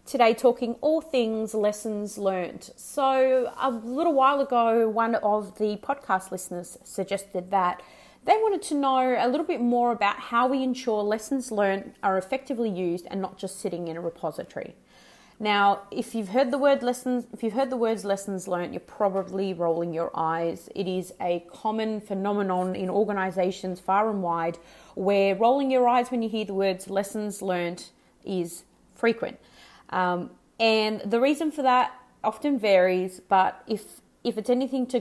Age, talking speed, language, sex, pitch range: 30-49, 170 wpm, English, female, 185-240 Hz